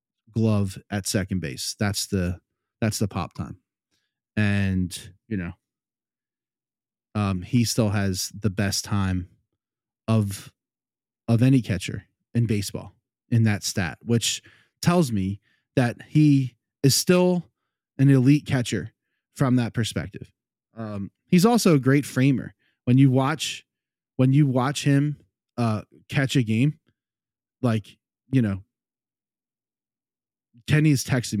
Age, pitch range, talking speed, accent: 20-39, 105-135 Hz, 120 wpm, American